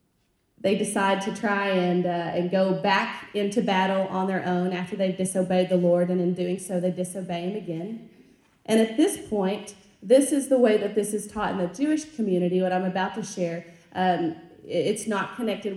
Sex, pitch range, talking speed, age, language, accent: female, 185-210 Hz, 200 wpm, 30-49, English, American